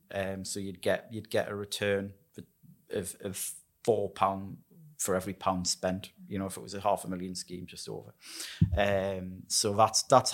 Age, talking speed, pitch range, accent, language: 30-49, 185 wpm, 100-115 Hz, British, English